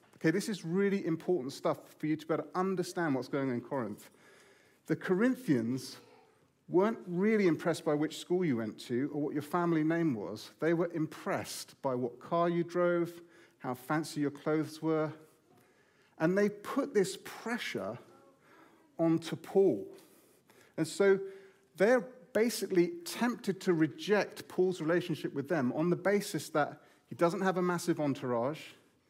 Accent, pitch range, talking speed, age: British, 145-185 Hz, 155 wpm, 40-59